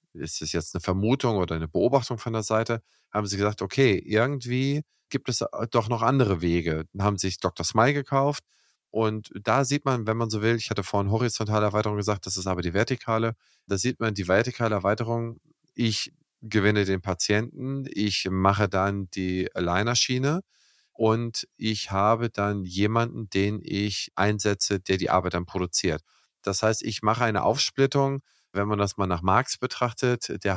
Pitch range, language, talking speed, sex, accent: 95-120 Hz, German, 175 wpm, male, German